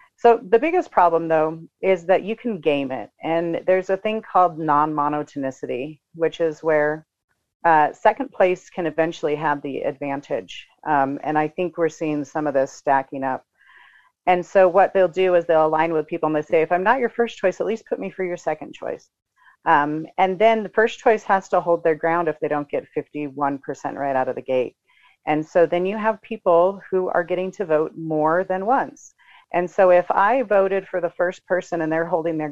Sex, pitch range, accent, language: female, 155-190 Hz, American, English